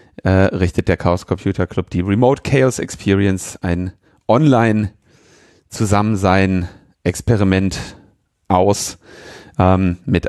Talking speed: 85 wpm